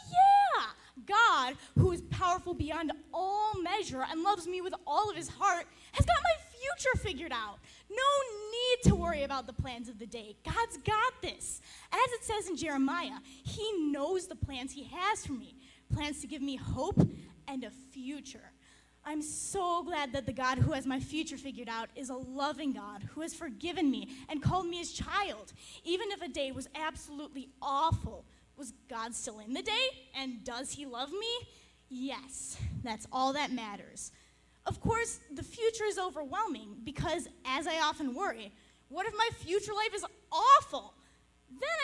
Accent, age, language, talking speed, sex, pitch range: American, 10-29, English, 175 wpm, female, 265-380 Hz